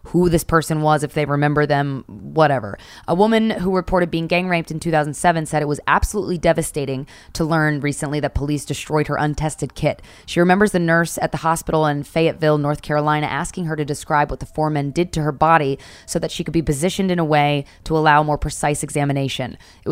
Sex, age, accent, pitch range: female, 20-39, American, 145-170 Hz